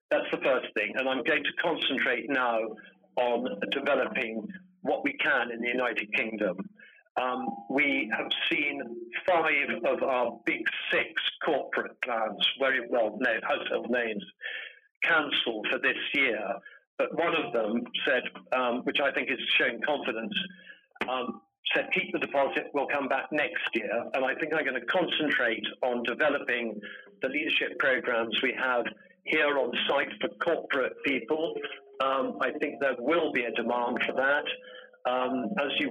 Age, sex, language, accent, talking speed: 50-69, male, English, British, 155 wpm